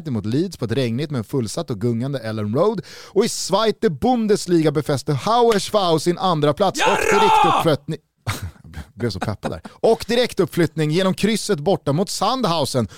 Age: 30-49